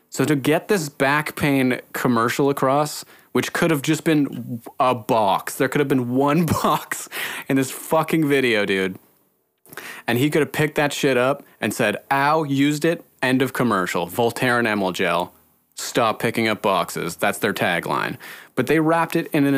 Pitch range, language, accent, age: 125-165 Hz, English, American, 30-49